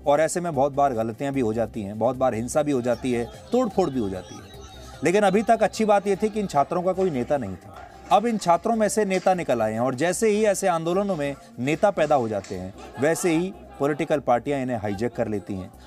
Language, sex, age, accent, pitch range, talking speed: English, male, 30-49, Indian, 130-180 Hz, 240 wpm